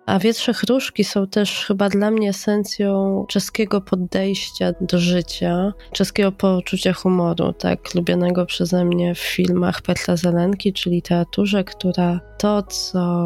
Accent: native